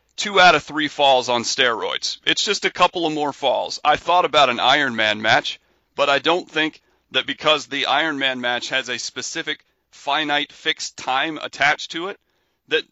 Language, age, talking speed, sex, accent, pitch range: English, 40-59, 190 wpm, male, American, 115-145 Hz